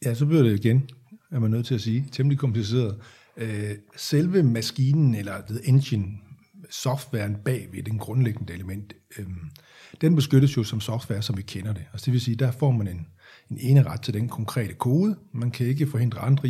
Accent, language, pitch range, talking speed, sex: native, Danish, 110-140 Hz, 195 wpm, male